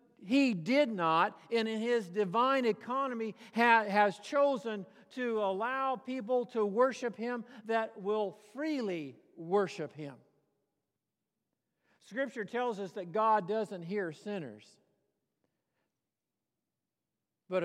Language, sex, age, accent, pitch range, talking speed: English, male, 50-69, American, 175-230 Hz, 100 wpm